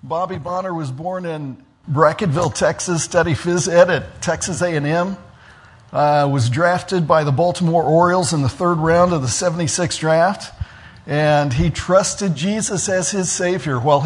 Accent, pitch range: American, 150-185 Hz